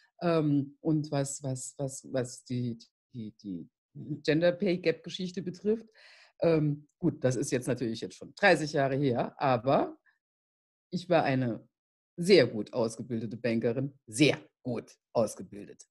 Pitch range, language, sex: 135-190 Hz, German, female